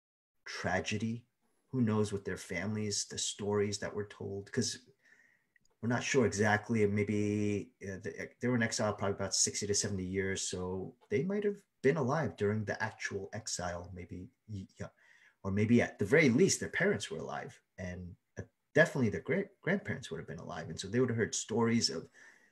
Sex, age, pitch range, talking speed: male, 30-49, 100-135 Hz, 190 wpm